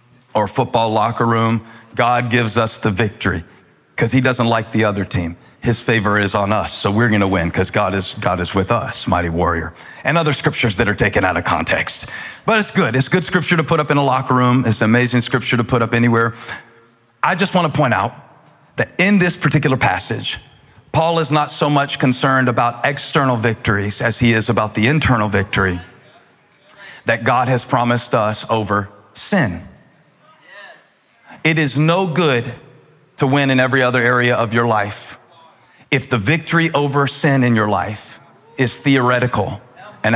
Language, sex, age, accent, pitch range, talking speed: English, male, 40-59, American, 115-140 Hz, 180 wpm